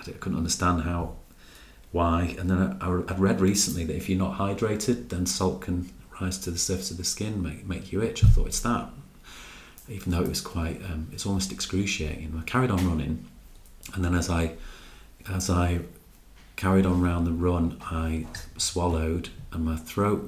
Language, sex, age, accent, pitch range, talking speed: English, male, 30-49, British, 85-95 Hz, 185 wpm